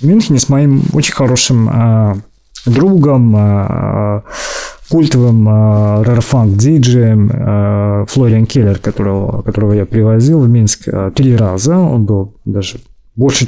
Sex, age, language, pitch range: male, 20-39, Russian, 110-140 Hz